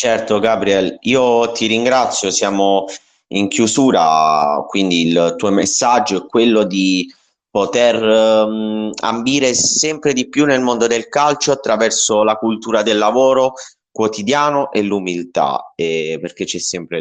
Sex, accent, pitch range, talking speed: male, native, 90-125 Hz, 125 wpm